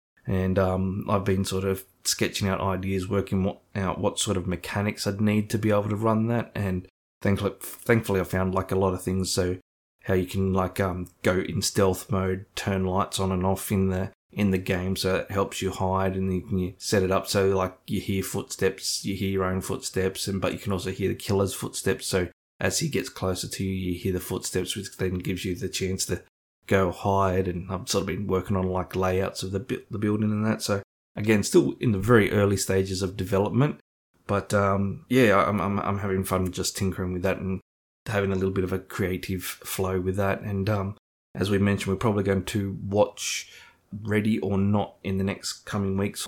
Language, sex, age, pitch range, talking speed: English, male, 20-39, 95-100 Hz, 220 wpm